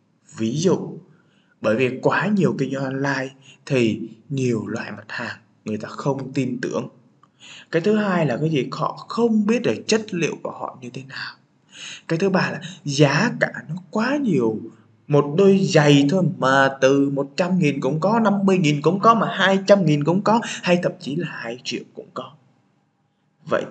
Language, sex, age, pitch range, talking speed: Vietnamese, male, 20-39, 130-180 Hz, 175 wpm